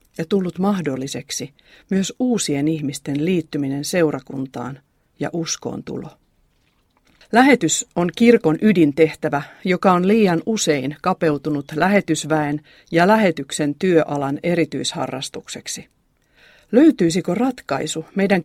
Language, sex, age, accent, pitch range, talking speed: Finnish, female, 40-59, native, 150-195 Hz, 90 wpm